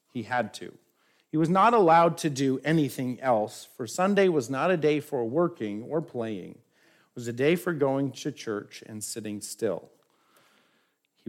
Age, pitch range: 50-69, 130-175 Hz